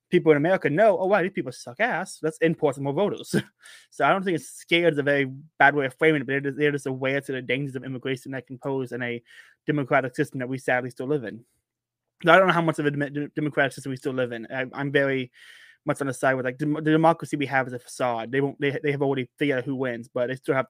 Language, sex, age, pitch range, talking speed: English, male, 20-39, 130-155 Hz, 285 wpm